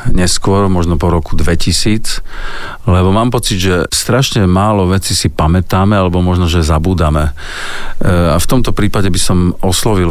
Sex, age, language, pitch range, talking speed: male, 50-69, Slovak, 85-95 Hz, 140 wpm